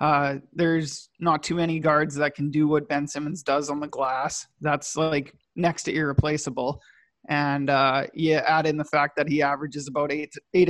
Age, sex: 20-39, male